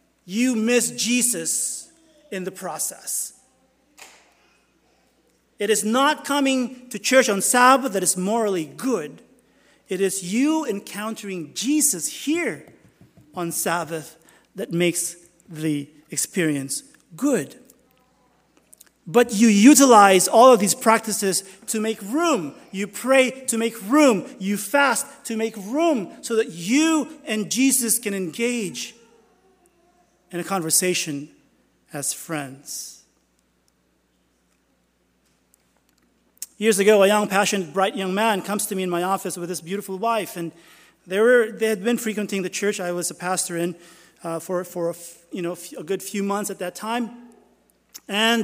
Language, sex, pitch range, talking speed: English, male, 175-235 Hz, 135 wpm